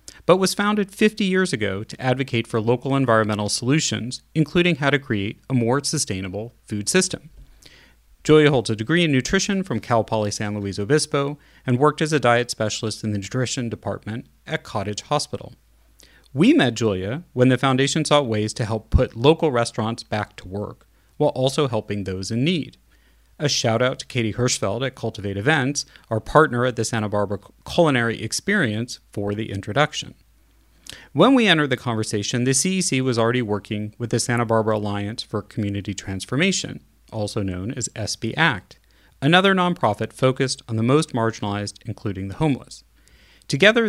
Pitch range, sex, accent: 105-140 Hz, male, American